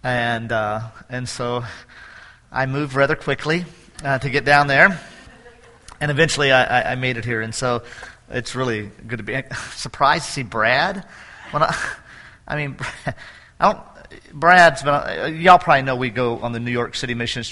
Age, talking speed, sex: 40-59, 180 wpm, male